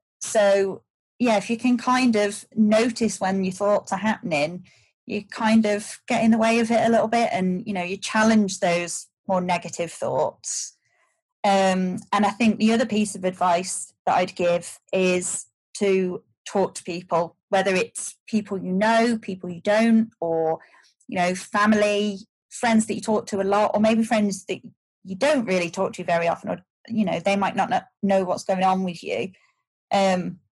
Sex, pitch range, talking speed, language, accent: female, 185-220 Hz, 185 wpm, English, British